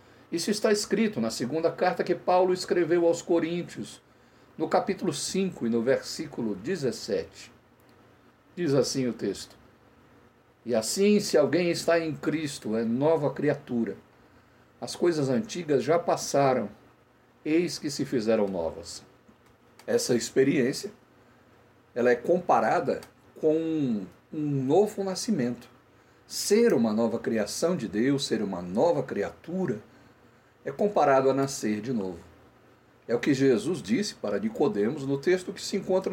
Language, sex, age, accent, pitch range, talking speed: Portuguese, male, 60-79, Brazilian, 120-175 Hz, 130 wpm